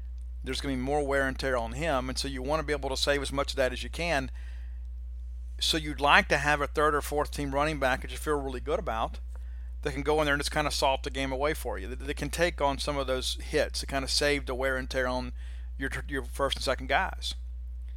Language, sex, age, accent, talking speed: English, male, 50-69, American, 275 wpm